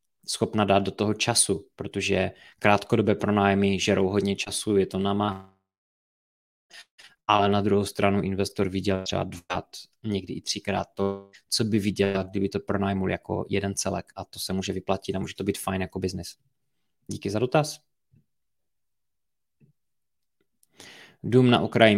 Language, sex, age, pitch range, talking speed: Czech, male, 20-39, 95-110 Hz, 145 wpm